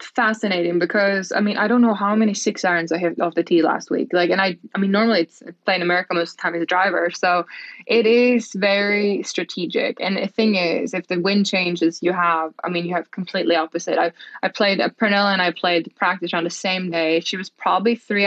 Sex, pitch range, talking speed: female, 170-200 Hz, 235 wpm